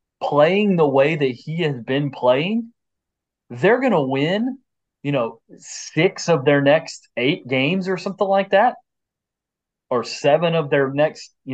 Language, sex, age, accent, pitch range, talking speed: English, male, 30-49, American, 130-175 Hz, 155 wpm